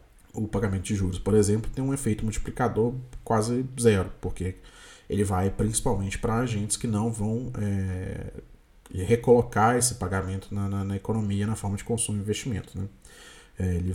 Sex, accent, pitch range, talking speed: male, Brazilian, 90-110 Hz, 155 wpm